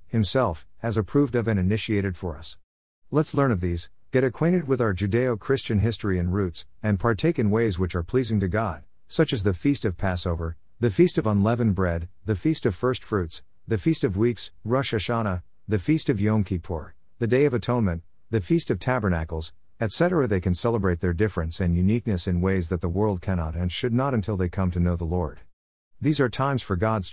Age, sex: 50-69, male